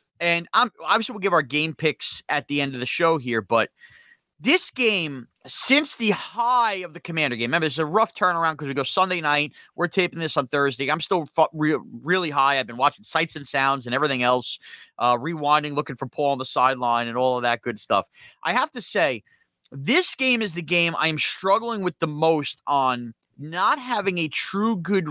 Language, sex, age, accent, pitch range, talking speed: English, male, 30-49, American, 140-180 Hz, 215 wpm